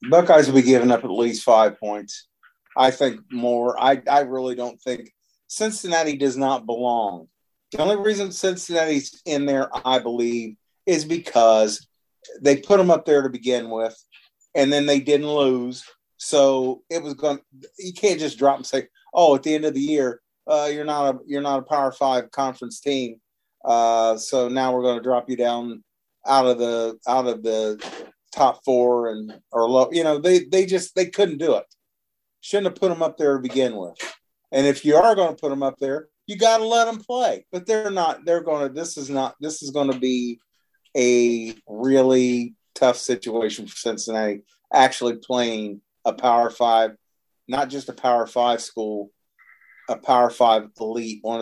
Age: 40-59